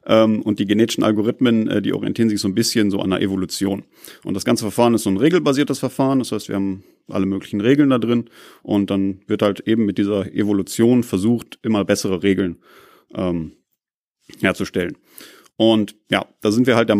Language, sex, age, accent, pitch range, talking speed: German, male, 30-49, German, 100-115 Hz, 185 wpm